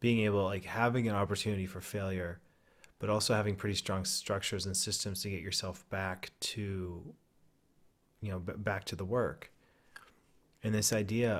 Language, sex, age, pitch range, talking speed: English, male, 30-49, 95-110 Hz, 160 wpm